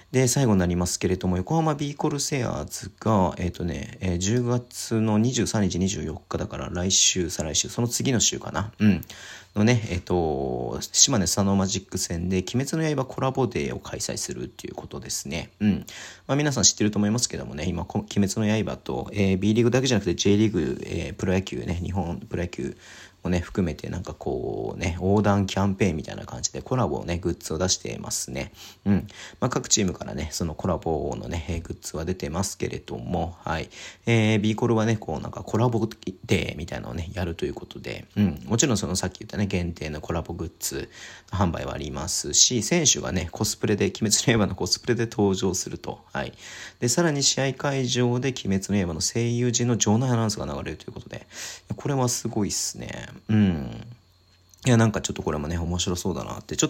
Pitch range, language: 90-115 Hz, Japanese